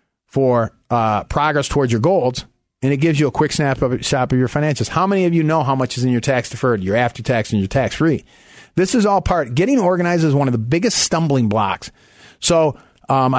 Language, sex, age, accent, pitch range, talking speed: English, male, 40-59, American, 125-165 Hz, 210 wpm